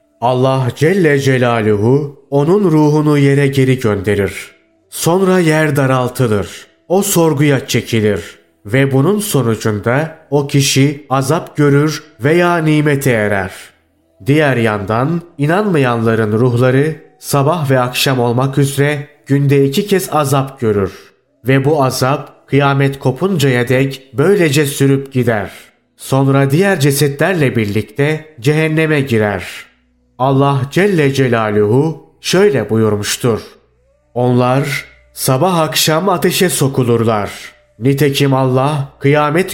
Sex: male